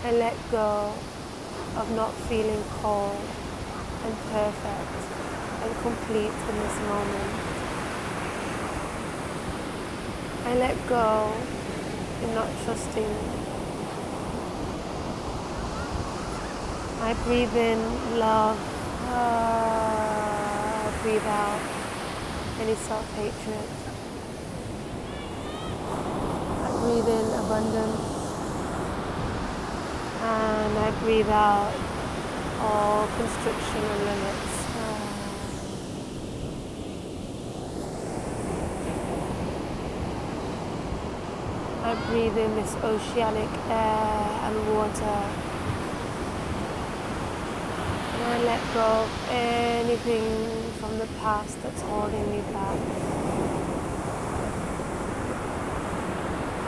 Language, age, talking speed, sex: English, 20-39, 70 wpm, female